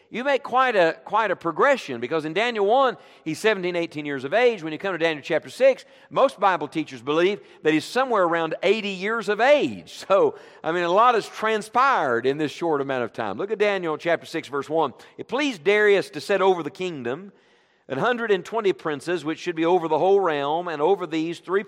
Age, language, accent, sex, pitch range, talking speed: 50-69, English, American, male, 160-230 Hz, 215 wpm